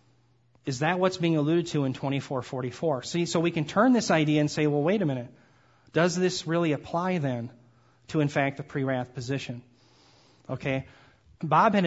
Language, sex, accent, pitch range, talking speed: English, male, American, 140-175 Hz, 175 wpm